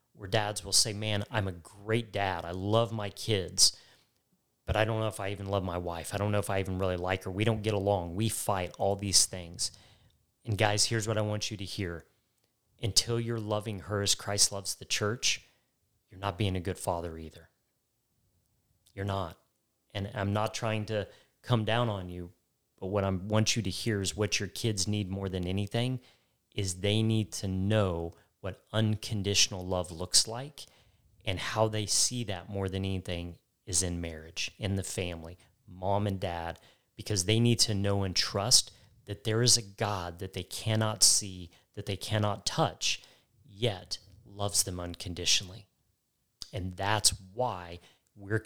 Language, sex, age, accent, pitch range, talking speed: English, male, 30-49, American, 95-110 Hz, 180 wpm